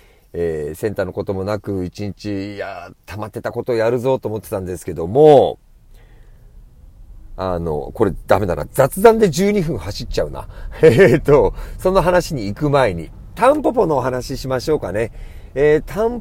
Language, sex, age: Japanese, male, 40-59